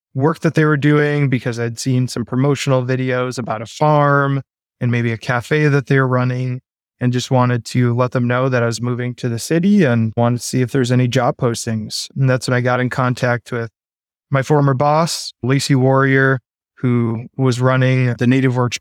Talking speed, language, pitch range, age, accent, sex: 200 wpm, English, 120-145 Hz, 20-39, American, male